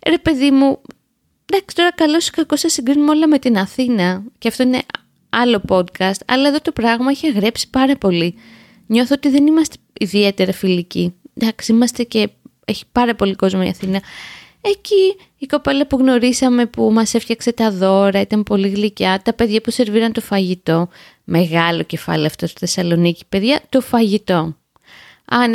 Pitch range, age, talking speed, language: 195-280 Hz, 20-39, 165 wpm, Greek